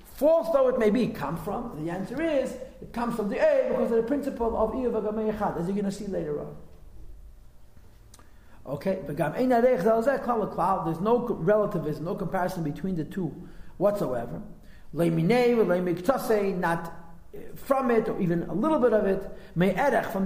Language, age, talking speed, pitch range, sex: English, 40-59, 150 wpm, 195-235 Hz, male